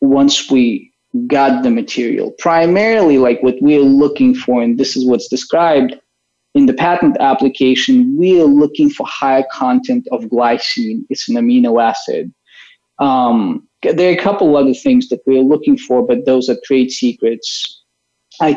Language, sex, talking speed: English, male, 160 wpm